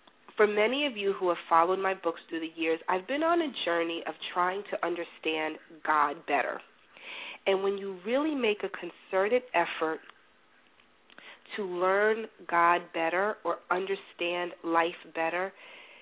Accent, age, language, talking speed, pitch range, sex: American, 40-59, English, 145 wpm, 175-250 Hz, female